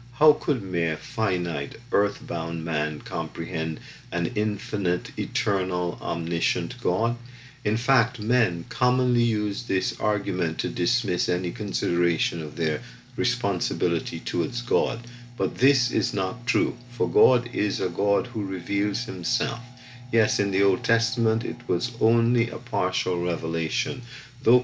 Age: 50-69